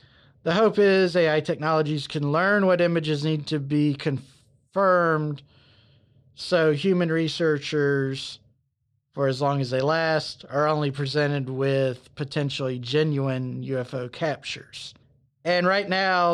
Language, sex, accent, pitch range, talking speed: English, male, American, 130-165 Hz, 120 wpm